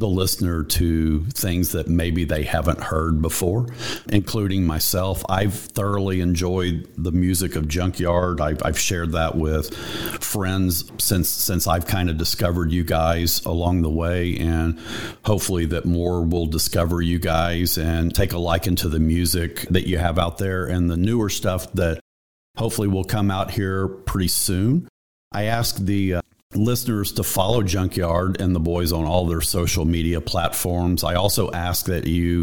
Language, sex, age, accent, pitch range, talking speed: English, male, 50-69, American, 85-100 Hz, 165 wpm